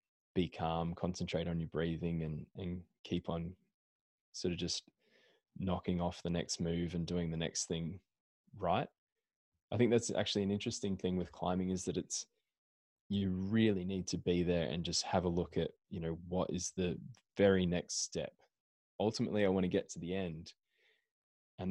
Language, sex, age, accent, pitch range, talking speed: English, male, 20-39, Australian, 85-95 Hz, 180 wpm